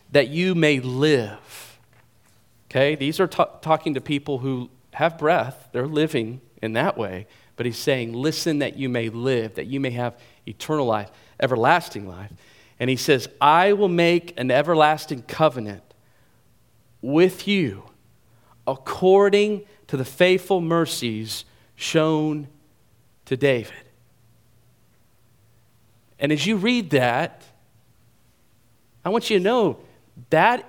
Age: 40-59